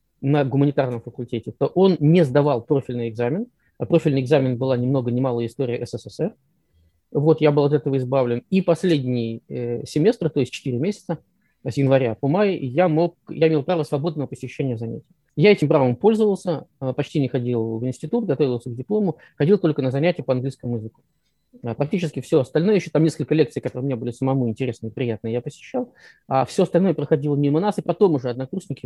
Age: 20-39